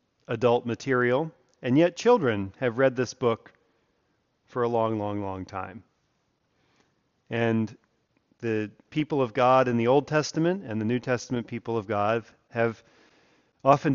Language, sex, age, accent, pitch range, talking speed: English, male, 40-59, American, 110-140 Hz, 140 wpm